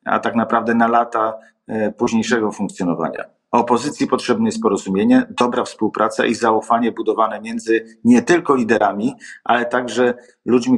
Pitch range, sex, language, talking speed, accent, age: 115-145 Hz, male, Polish, 130 wpm, native, 50-69